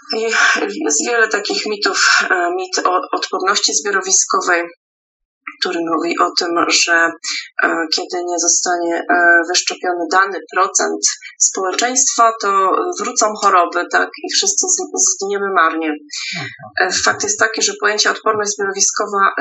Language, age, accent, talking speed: Polish, 30-49, native, 110 wpm